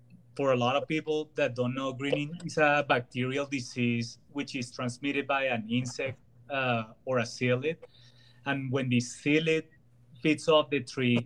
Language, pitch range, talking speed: English, 120-140 Hz, 165 wpm